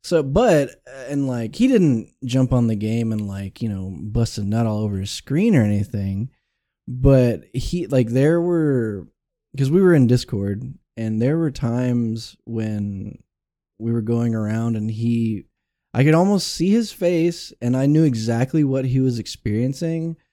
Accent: American